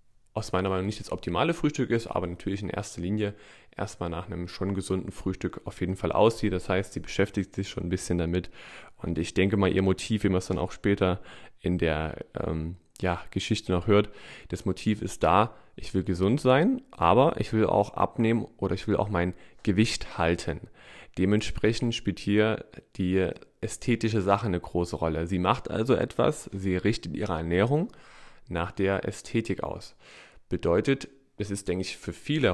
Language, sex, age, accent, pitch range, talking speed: German, male, 20-39, German, 90-110 Hz, 185 wpm